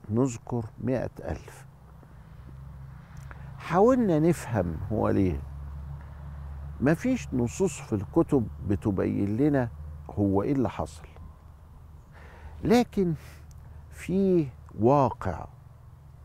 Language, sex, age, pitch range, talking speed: Arabic, male, 50-69, 95-130 Hz, 80 wpm